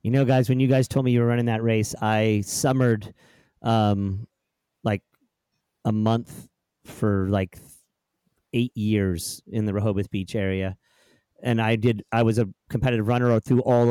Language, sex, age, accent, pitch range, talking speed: English, male, 30-49, American, 105-130 Hz, 165 wpm